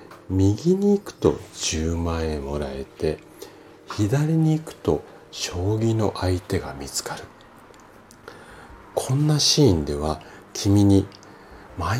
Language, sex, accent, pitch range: Japanese, male, native, 85-130 Hz